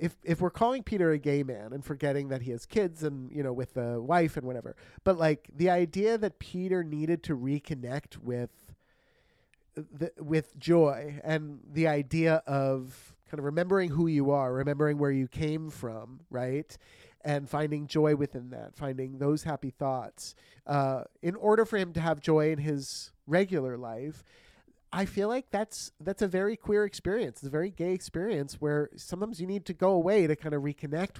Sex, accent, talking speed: male, American, 185 wpm